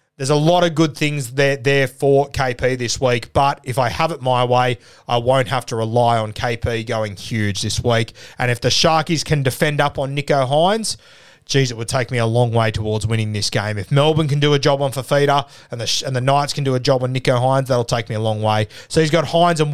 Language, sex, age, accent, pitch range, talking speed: English, male, 20-39, Australian, 120-145 Hz, 250 wpm